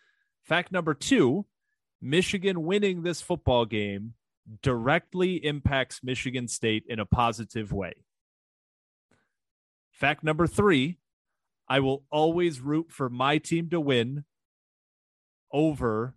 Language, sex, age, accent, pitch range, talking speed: English, male, 30-49, American, 115-155 Hz, 110 wpm